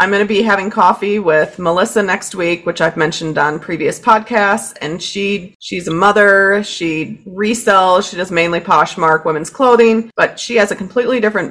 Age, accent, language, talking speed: 30-49, American, English, 180 wpm